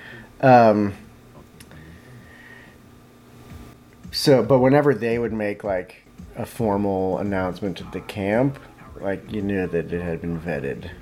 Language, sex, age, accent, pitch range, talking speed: English, male, 30-49, American, 85-110 Hz, 120 wpm